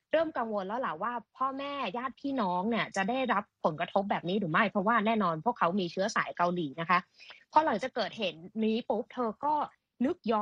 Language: Thai